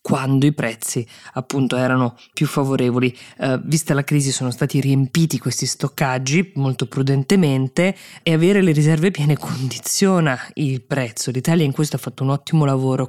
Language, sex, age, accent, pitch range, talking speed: Italian, female, 20-39, native, 130-155 Hz, 155 wpm